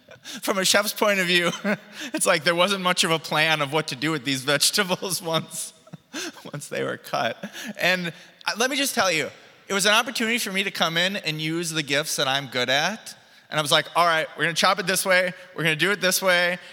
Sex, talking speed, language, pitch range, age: male, 250 wpm, English, 155-200 Hz, 20-39